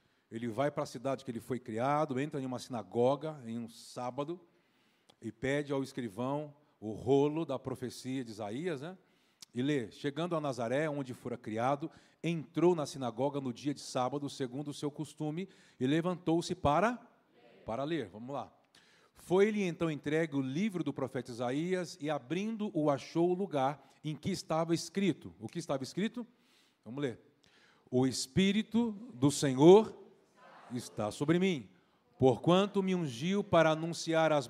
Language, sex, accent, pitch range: Portuguese, male, Brazilian, 135-180 Hz